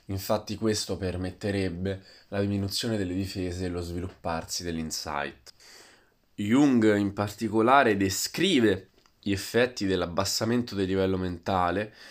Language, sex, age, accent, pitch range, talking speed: Italian, male, 20-39, native, 95-115 Hz, 105 wpm